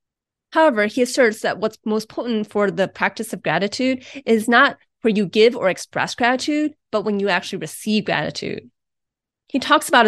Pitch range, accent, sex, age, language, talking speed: 185-240 Hz, American, female, 30-49, English, 175 wpm